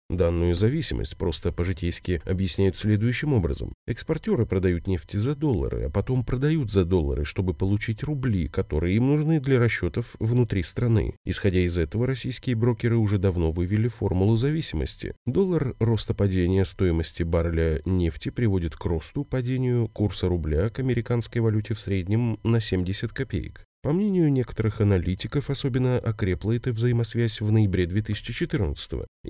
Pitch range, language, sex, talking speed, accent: 90-120 Hz, Russian, male, 140 wpm, native